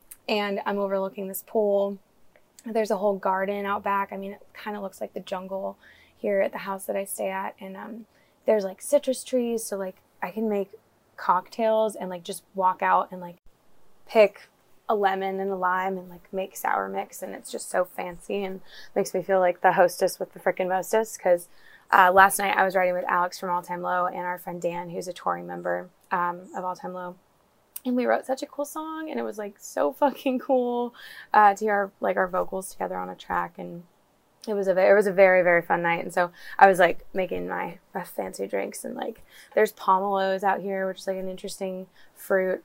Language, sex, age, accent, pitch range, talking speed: English, female, 20-39, American, 180-205 Hz, 220 wpm